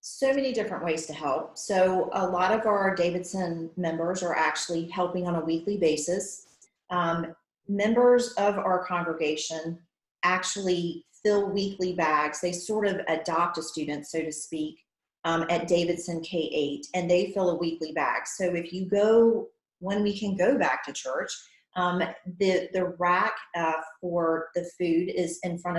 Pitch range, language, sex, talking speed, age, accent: 160-190 Hz, English, female, 165 wpm, 40-59, American